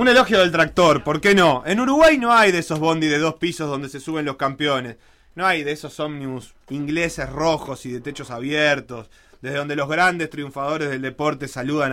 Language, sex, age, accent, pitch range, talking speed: Spanish, male, 30-49, Argentinian, 130-180 Hz, 205 wpm